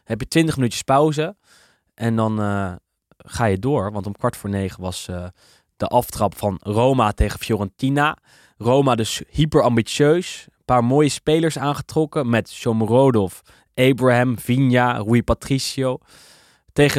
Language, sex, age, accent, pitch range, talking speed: Dutch, male, 20-39, Dutch, 100-130 Hz, 140 wpm